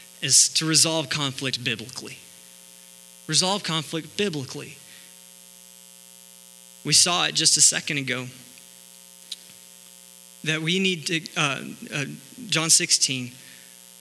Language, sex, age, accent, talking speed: English, male, 20-39, American, 100 wpm